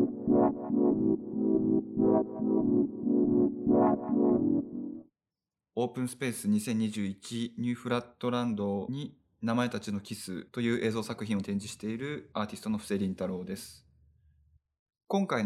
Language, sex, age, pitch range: Japanese, male, 20-39, 100-130 Hz